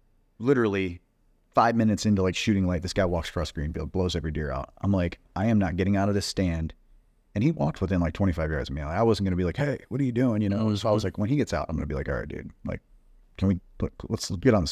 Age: 30-49